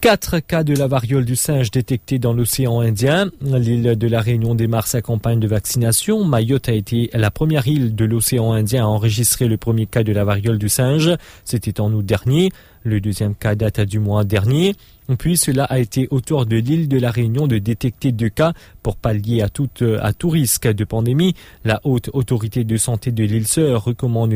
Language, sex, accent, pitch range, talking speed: English, male, French, 110-135 Hz, 200 wpm